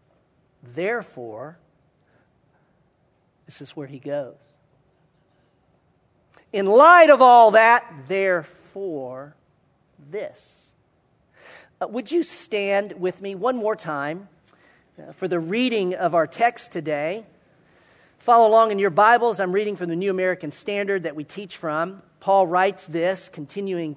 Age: 50-69